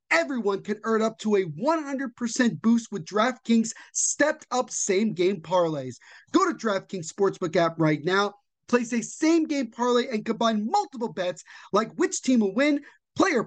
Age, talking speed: 30-49, 150 wpm